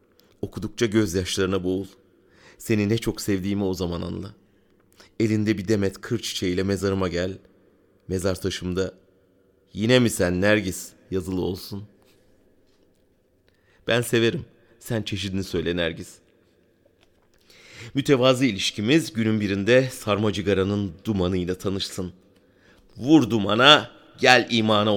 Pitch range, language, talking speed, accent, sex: 95-110 Hz, German, 105 wpm, Turkish, male